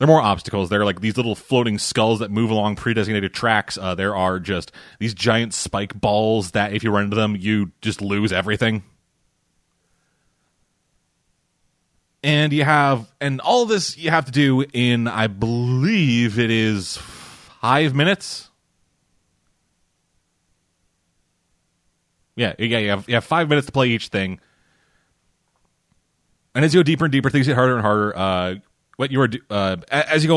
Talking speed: 160 wpm